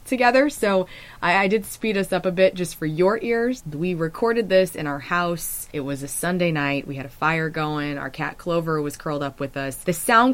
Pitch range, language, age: 145-175 Hz, English, 20-39